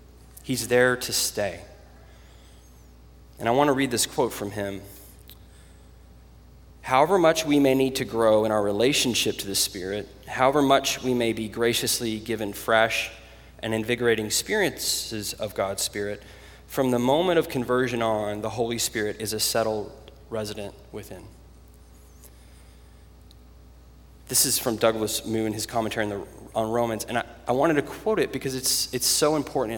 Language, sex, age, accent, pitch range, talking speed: English, male, 20-39, American, 85-120 Hz, 150 wpm